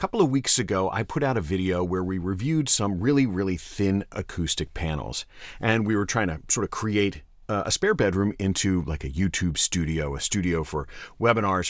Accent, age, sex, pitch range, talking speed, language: American, 40-59, male, 80-115 Hz, 200 wpm, English